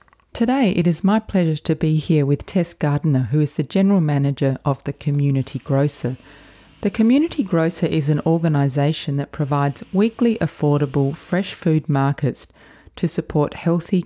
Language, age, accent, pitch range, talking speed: English, 30-49, Australian, 135-170 Hz, 155 wpm